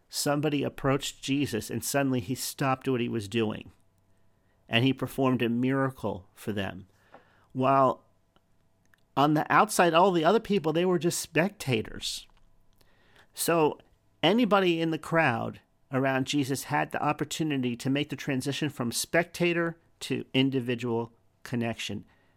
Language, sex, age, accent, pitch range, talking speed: English, male, 50-69, American, 110-140 Hz, 130 wpm